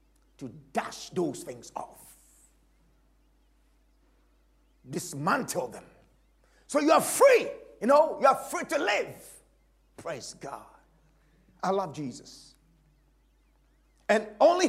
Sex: male